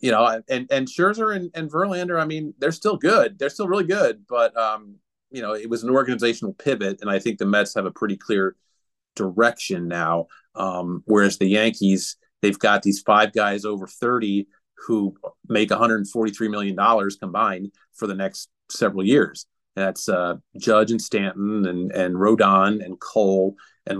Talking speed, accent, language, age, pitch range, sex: 175 wpm, American, English, 40-59, 100-125 Hz, male